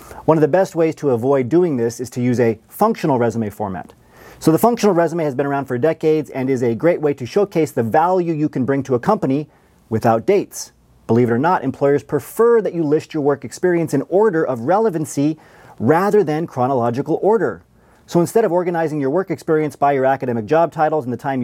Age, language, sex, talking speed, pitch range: 40-59, English, male, 215 wpm, 125-160 Hz